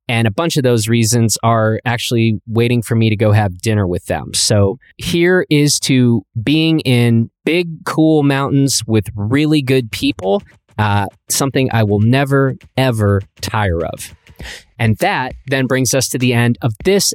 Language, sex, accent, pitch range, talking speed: English, male, American, 110-145 Hz, 170 wpm